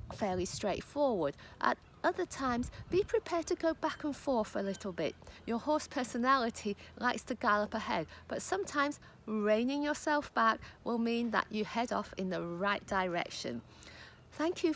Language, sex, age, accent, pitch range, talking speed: English, female, 50-69, British, 200-285 Hz, 160 wpm